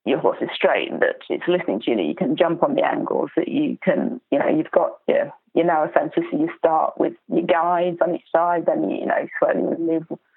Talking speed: 245 wpm